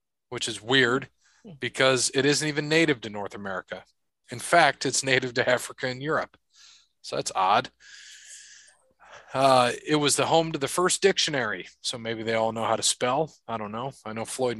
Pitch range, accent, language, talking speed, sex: 120-150 Hz, American, English, 185 wpm, male